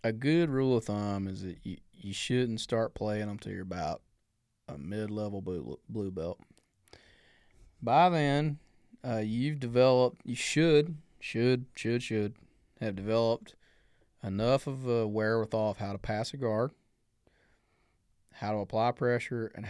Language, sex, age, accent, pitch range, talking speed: English, male, 20-39, American, 100-120 Hz, 145 wpm